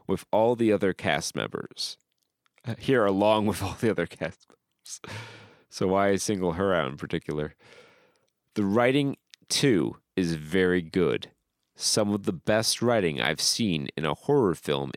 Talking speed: 150 wpm